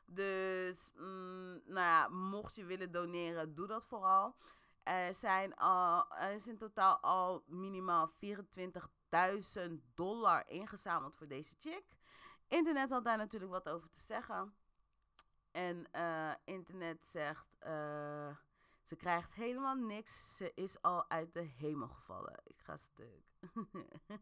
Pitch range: 170-215 Hz